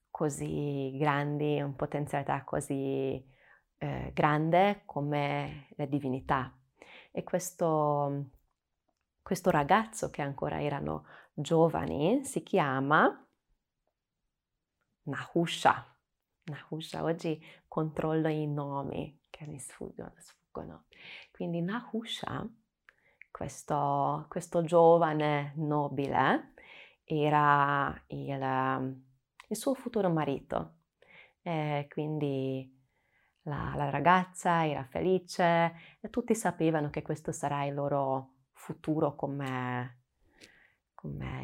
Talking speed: 85 wpm